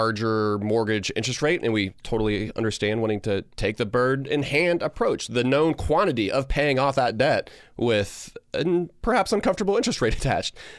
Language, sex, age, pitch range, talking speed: English, male, 30-49, 105-135 Hz, 170 wpm